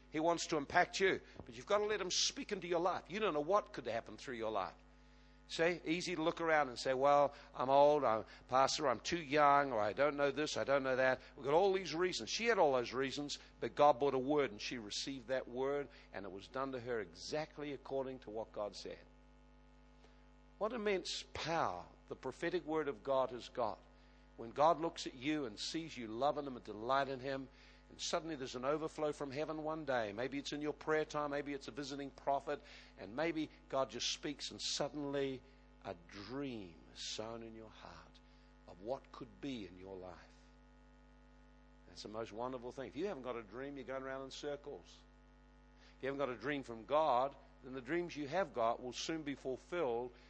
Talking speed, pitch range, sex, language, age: 210 wpm, 115-150 Hz, male, English, 60-79